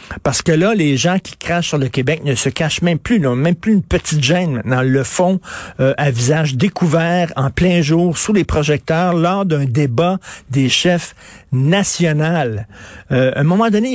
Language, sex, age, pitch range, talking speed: French, male, 50-69, 130-175 Hz, 200 wpm